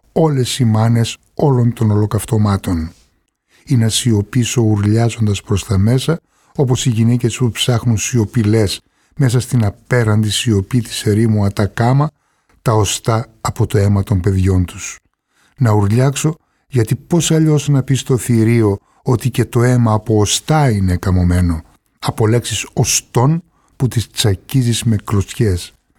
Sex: male